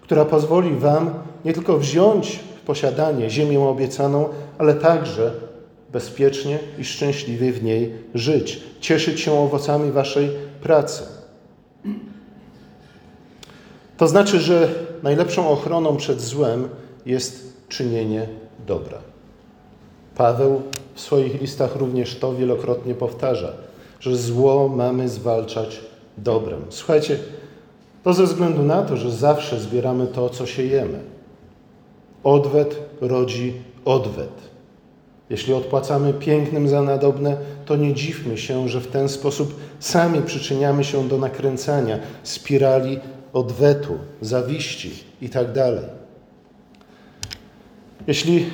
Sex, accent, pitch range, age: male, native, 125-150 Hz, 50-69